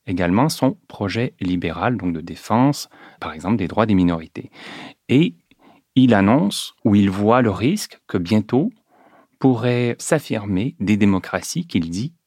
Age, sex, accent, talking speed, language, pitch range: 40-59, male, French, 140 wpm, French, 90-125 Hz